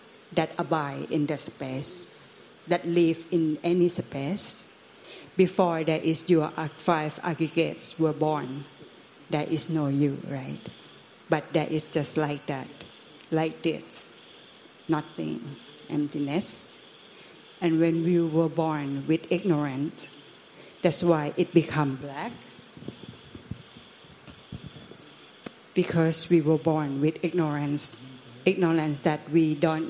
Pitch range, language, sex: 145-165 Hz, Thai, female